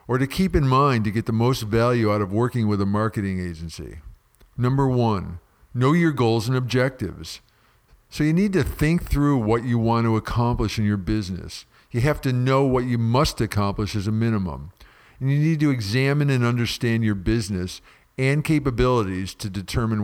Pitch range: 105-135 Hz